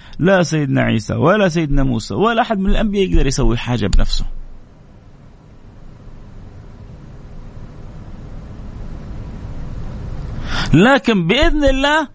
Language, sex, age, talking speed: Arabic, male, 50-69, 85 wpm